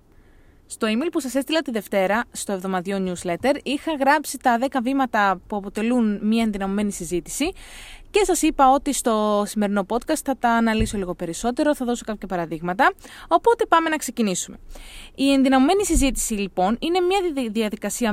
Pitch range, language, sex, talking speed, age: 200-275 Hz, Greek, female, 155 wpm, 20-39